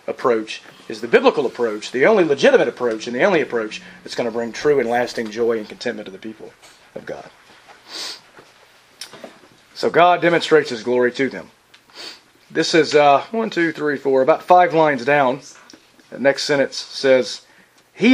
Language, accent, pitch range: English, American, 135-180 Hz